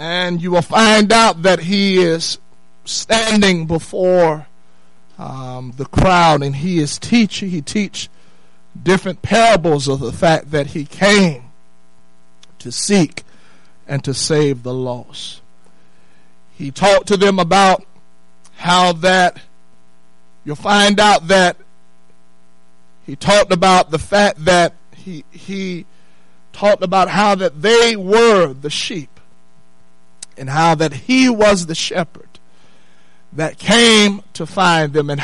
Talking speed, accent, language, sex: 125 wpm, American, English, male